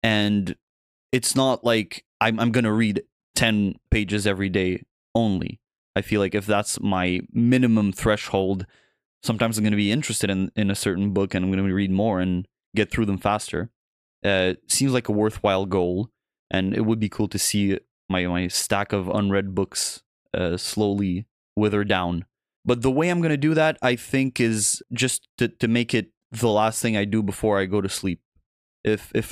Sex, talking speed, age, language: male, 195 wpm, 20-39, English